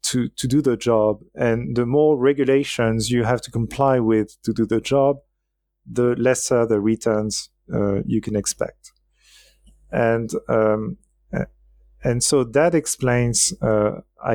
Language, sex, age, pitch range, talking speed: English, male, 40-59, 110-135 Hz, 140 wpm